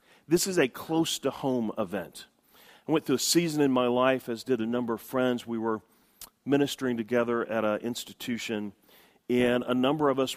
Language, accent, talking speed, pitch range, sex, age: English, American, 180 wpm, 115-140 Hz, male, 40-59